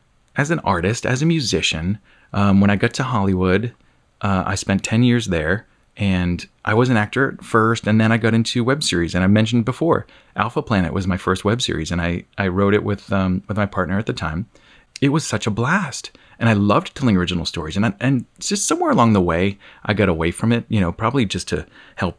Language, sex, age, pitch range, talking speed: English, male, 30-49, 95-125 Hz, 235 wpm